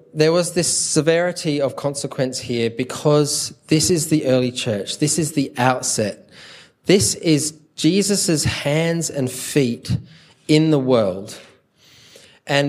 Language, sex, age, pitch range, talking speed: English, male, 20-39, 130-160 Hz, 130 wpm